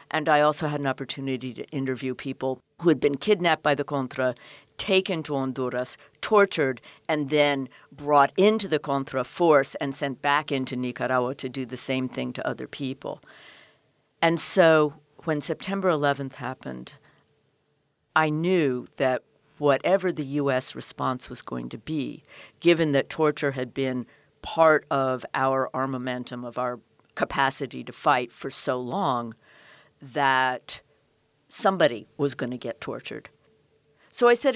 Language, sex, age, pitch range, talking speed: English, female, 50-69, 130-155 Hz, 150 wpm